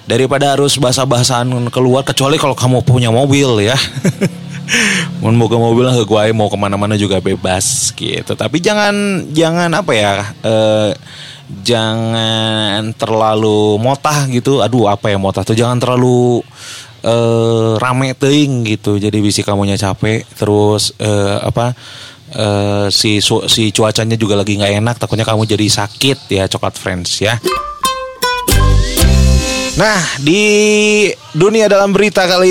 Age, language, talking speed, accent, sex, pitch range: 30-49, Indonesian, 130 wpm, native, male, 110-140 Hz